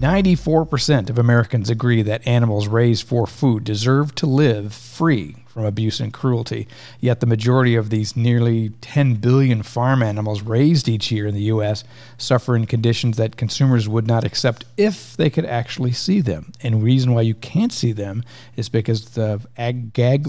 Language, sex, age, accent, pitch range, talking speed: English, male, 50-69, American, 110-130 Hz, 175 wpm